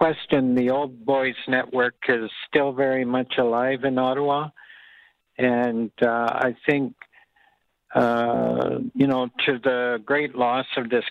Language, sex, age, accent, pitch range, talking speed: English, male, 60-79, American, 120-135 Hz, 135 wpm